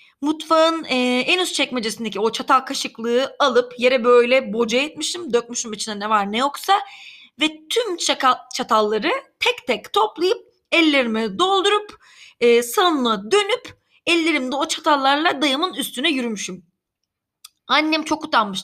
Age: 30-49